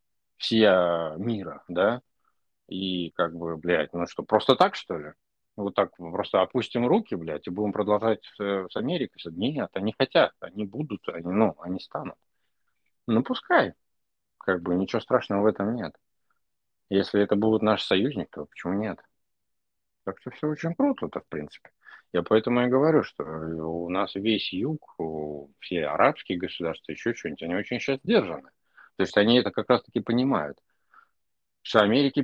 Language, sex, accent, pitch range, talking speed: Russian, male, native, 85-115 Hz, 160 wpm